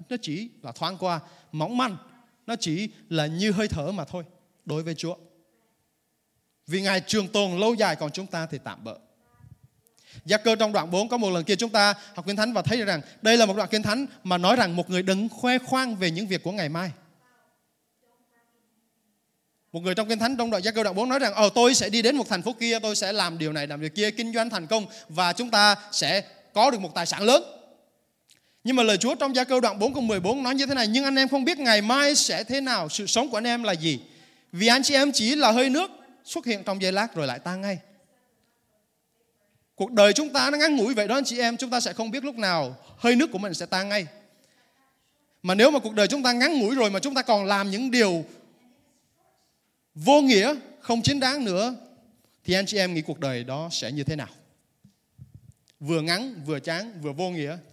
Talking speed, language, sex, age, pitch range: 235 wpm, Vietnamese, male, 20-39, 180-245 Hz